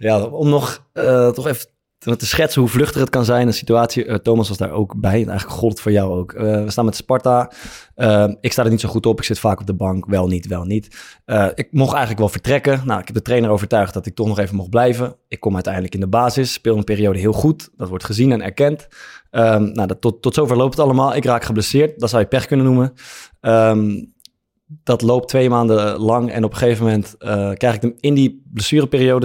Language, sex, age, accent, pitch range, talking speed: Dutch, male, 20-39, Dutch, 110-130 Hz, 250 wpm